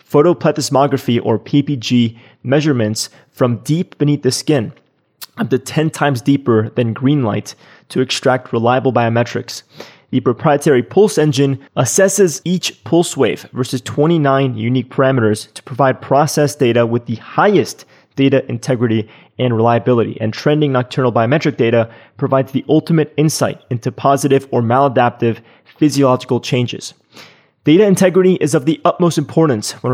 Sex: male